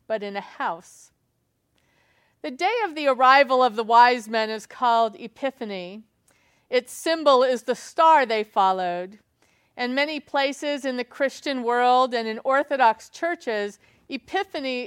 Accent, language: American, English